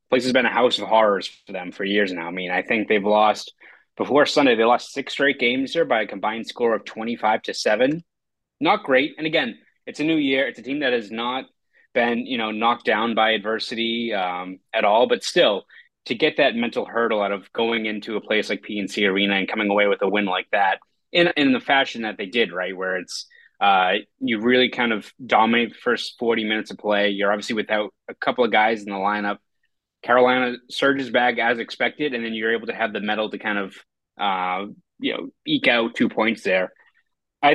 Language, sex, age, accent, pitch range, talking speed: English, male, 20-39, American, 105-130 Hz, 225 wpm